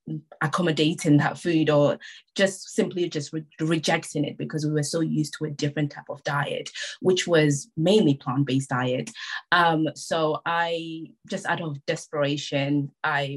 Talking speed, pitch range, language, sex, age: 155 wpm, 145-175 Hz, English, female, 20-39